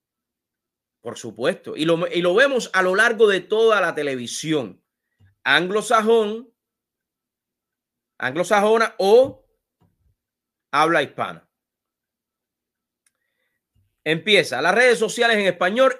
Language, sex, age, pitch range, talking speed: English, male, 30-49, 165-225 Hz, 90 wpm